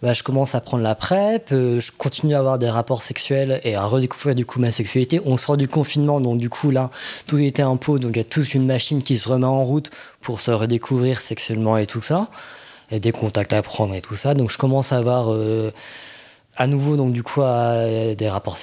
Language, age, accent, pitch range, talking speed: French, 20-39, French, 120-150 Hz, 240 wpm